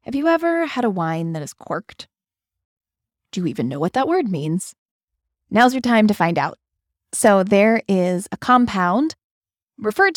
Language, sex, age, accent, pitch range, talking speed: English, female, 20-39, American, 175-225 Hz, 170 wpm